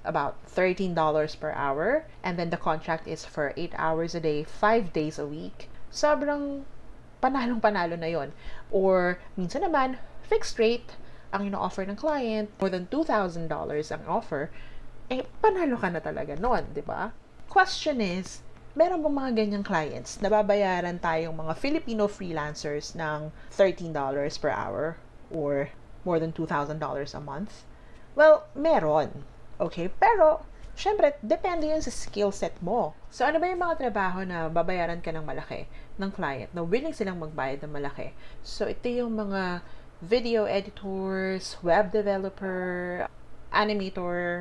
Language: English